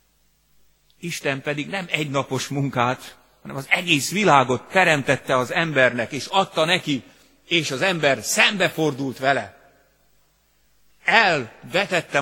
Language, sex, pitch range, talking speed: Hungarian, male, 120-160 Hz, 105 wpm